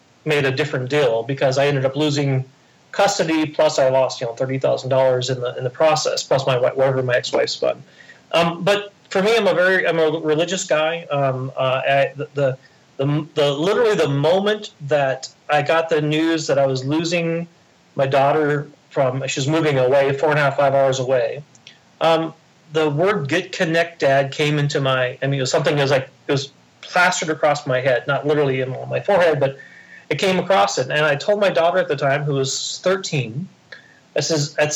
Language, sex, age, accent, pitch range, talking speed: English, male, 30-49, American, 140-165 Hz, 205 wpm